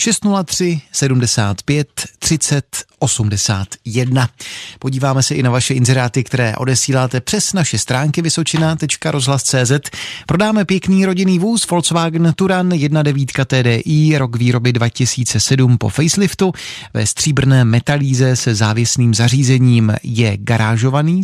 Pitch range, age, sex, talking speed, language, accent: 120-160 Hz, 30-49, male, 105 wpm, Czech, native